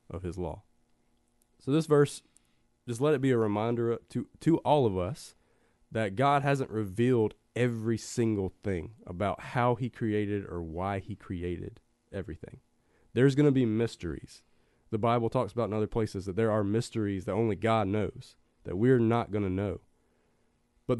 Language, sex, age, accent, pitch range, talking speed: English, male, 30-49, American, 100-125 Hz, 175 wpm